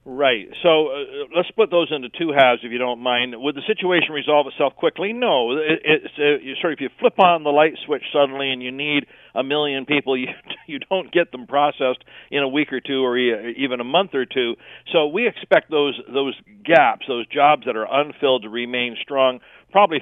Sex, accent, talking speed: male, American, 200 wpm